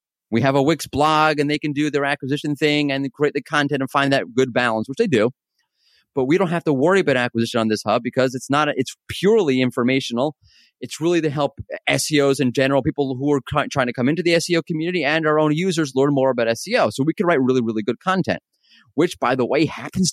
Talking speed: 235 wpm